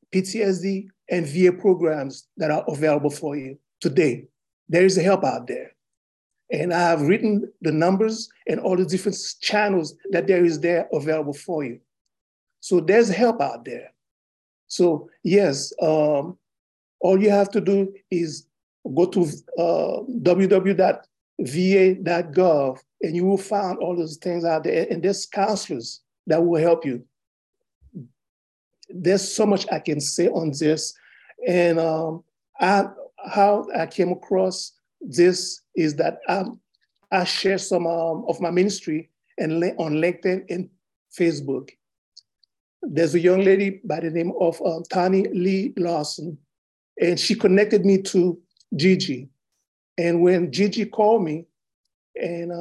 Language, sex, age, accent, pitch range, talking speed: English, male, 50-69, Nigerian, 160-195 Hz, 140 wpm